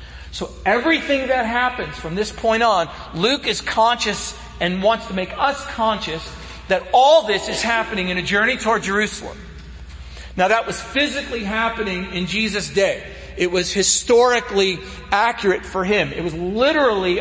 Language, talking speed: English, 155 wpm